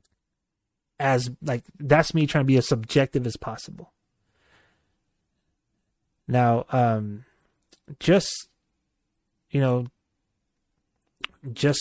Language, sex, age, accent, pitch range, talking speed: English, male, 30-49, American, 120-145 Hz, 85 wpm